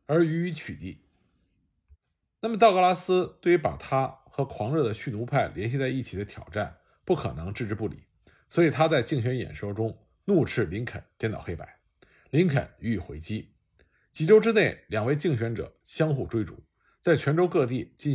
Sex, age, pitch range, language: male, 50-69, 105-165 Hz, Chinese